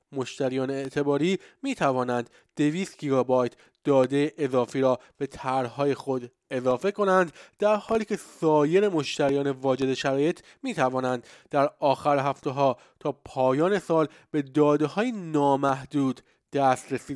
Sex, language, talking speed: male, Persian, 120 wpm